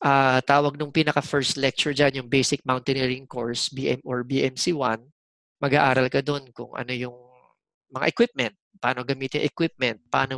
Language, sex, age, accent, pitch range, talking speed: Filipino, male, 20-39, native, 120-145 Hz, 145 wpm